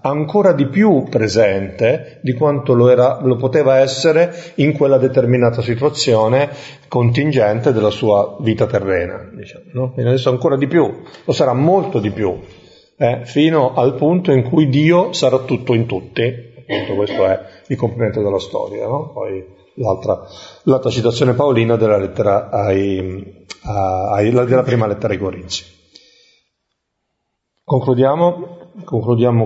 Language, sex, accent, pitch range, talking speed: Italian, male, native, 105-135 Hz, 135 wpm